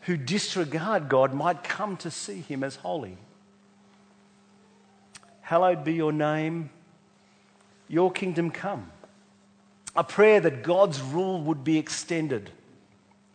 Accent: Australian